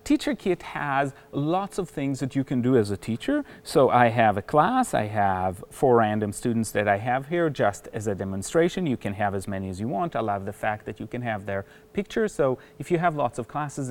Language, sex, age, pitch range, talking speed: English, male, 30-49, 110-150 Hz, 240 wpm